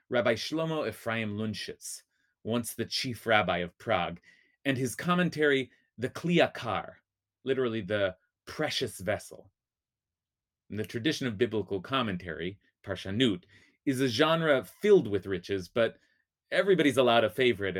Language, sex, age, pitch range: English, male, 30-49, 100-150 Hz